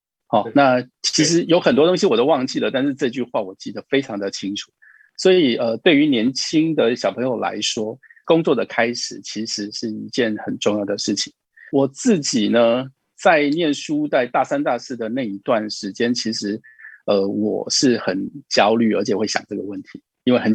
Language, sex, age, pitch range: Chinese, male, 50-69, 110-170 Hz